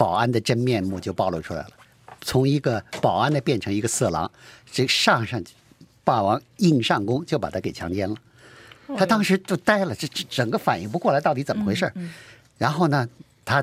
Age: 50-69